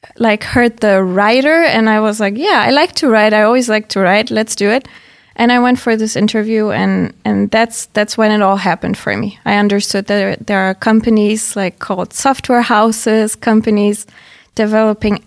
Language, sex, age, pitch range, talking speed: English, female, 20-39, 205-225 Hz, 195 wpm